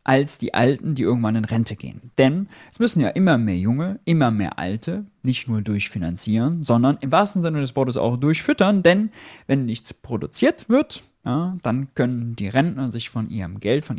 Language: German